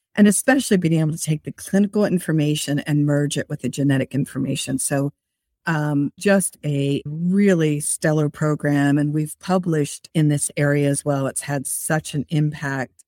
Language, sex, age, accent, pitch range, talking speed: English, female, 50-69, American, 140-170 Hz, 165 wpm